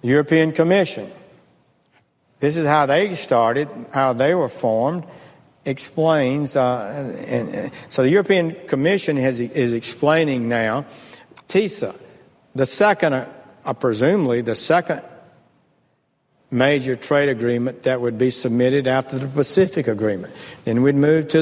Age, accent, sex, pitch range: 60-79, American, male, 120-160 Hz